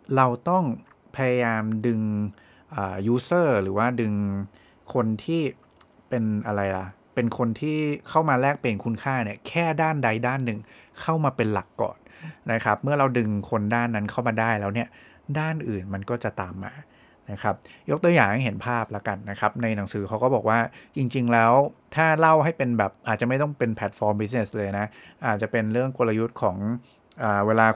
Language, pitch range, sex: English, 105-140 Hz, male